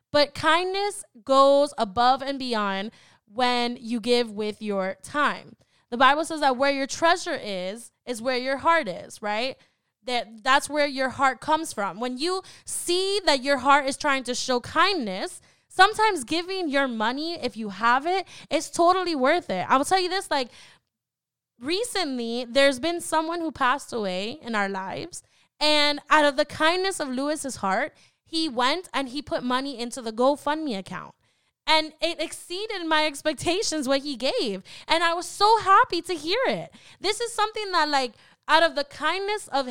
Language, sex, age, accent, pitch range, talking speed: English, female, 10-29, American, 250-325 Hz, 175 wpm